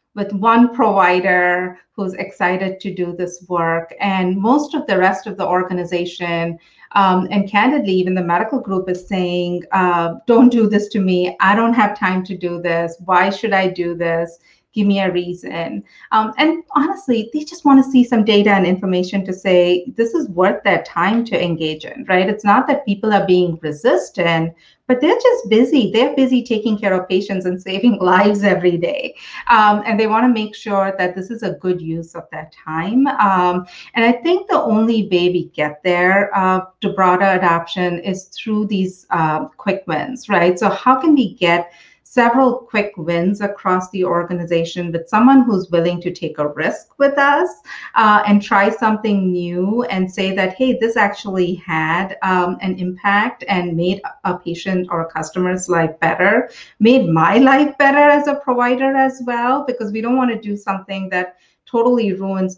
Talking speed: 185 wpm